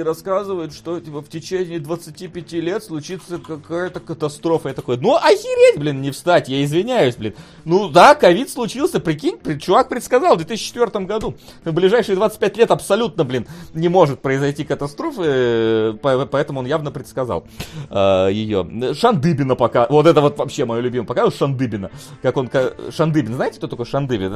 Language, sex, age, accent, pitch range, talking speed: Russian, male, 30-49, native, 115-165 Hz, 155 wpm